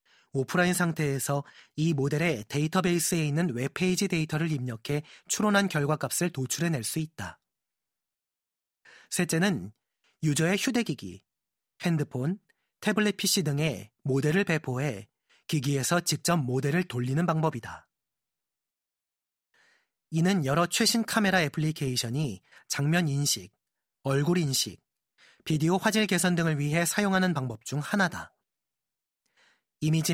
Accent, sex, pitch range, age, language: native, male, 135-180 Hz, 30-49, Korean